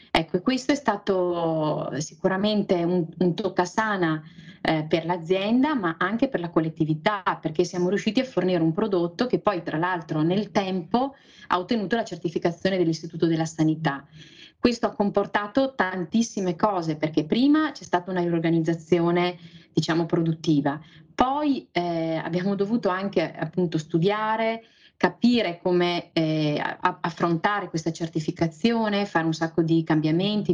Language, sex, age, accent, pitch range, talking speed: Italian, female, 30-49, native, 165-215 Hz, 135 wpm